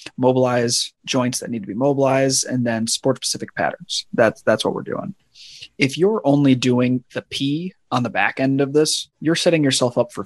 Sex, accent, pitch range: male, American, 120-145 Hz